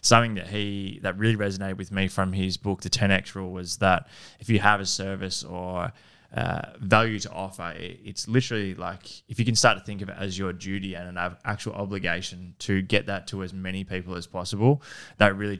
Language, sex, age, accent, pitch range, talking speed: English, male, 20-39, Australian, 95-105 Hz, 210 wpm